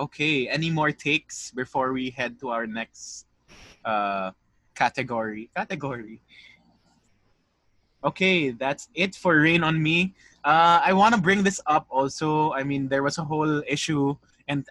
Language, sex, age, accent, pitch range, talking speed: English, male, 20-39, Filipino, 120-150 Hz, 145 wpm